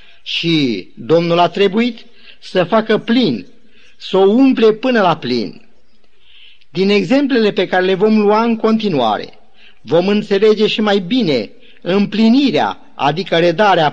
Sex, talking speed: male, 130 wpm